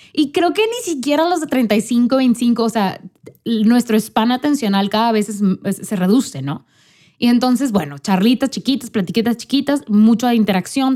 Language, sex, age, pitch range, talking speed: Spanish, female, 20-39, 185-255 Hz, 170 wpm